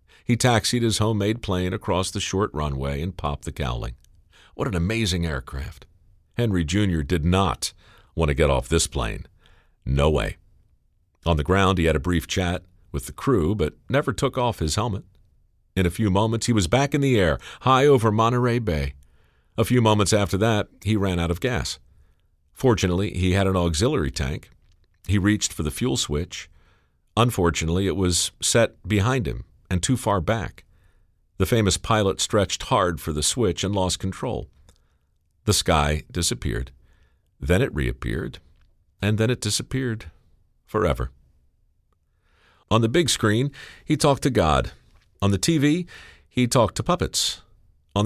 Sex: male